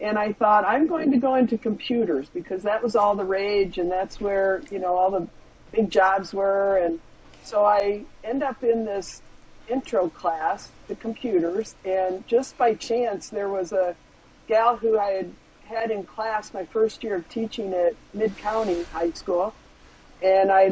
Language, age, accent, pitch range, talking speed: English, 50-69, American, 190-235 Hz, 180 wpm